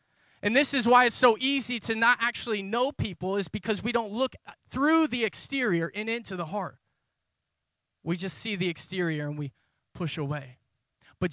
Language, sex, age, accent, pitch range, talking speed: English, male, 20-39, American, 145-200 Hz, 180 wpm